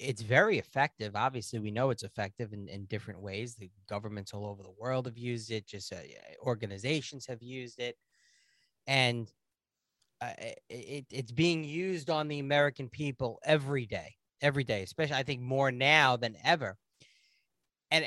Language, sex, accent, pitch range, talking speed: English, male, American, 120-150 Hz, 165 wpm